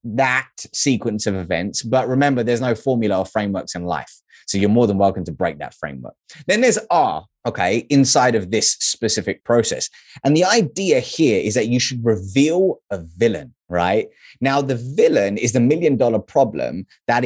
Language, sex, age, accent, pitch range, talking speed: English, male, 20-39, British, 115-155 Hz, 180 wpm